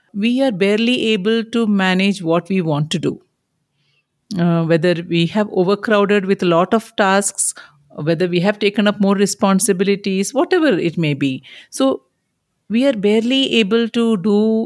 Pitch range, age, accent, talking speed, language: 180-230 Hz, 50-69, Indian, 160 wpm, English